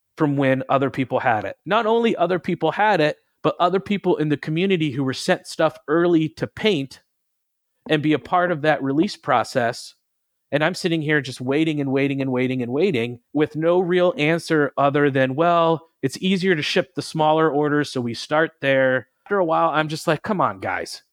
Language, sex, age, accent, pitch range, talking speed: English, male, 40-59, American, 130-165 Hz, 205 wpm